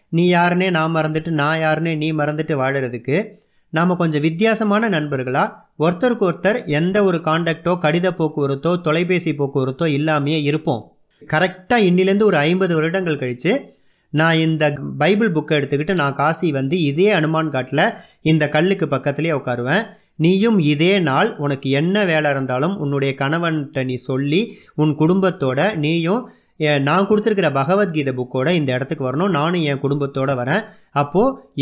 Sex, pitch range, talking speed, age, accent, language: male, 140-185 Hz, 135 wpm, 30-49, native, Tamil